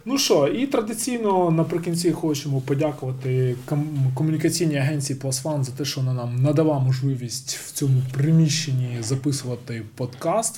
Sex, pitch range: male, 130-155 Hz